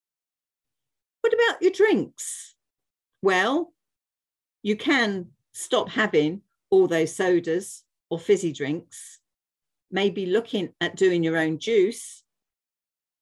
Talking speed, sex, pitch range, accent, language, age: 100 wpm, female, 150-205 Hz, British, English, 50-69